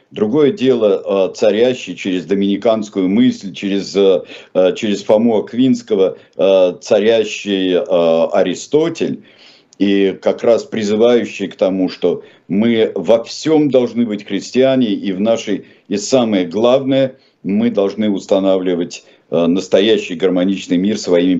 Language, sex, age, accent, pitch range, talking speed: Russian, male, 50-69, native, 100-150 Hz, 105 wpm